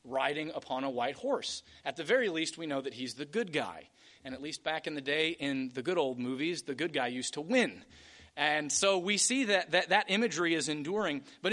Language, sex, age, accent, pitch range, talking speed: English, male, 30-49, American, 145-200 Hz, 235 wpm